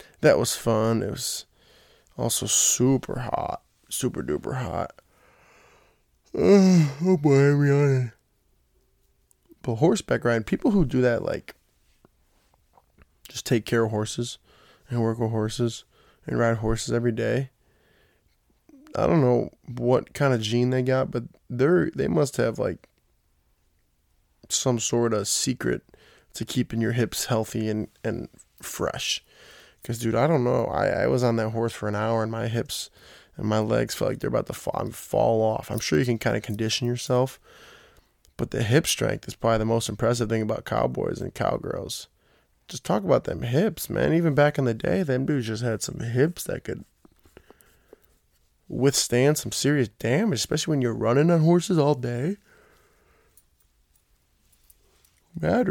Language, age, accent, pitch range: English, 20-39, American, 110-135 Hz